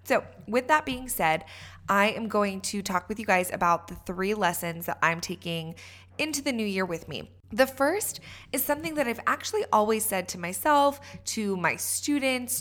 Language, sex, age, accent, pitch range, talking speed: English, female, 20-39, American, 175-235 Hz, 190 wpm